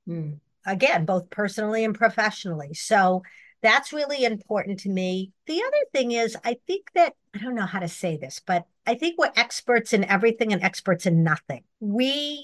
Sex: female